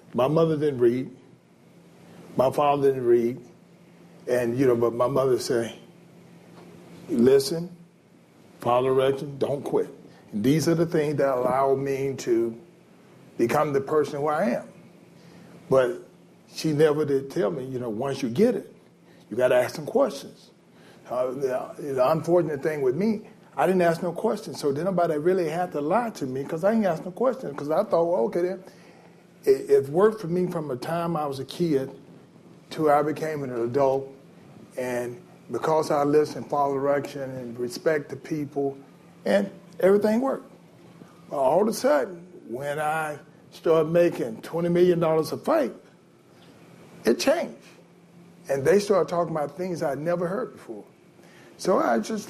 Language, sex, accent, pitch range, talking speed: English, male, American, 140-180 Hz, 160 wpm